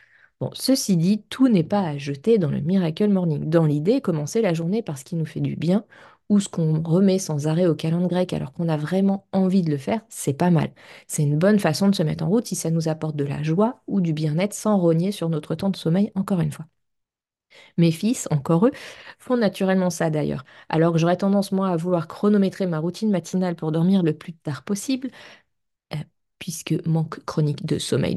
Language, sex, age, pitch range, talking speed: French, female, 30-49, 165-200 Hz, 220 wpm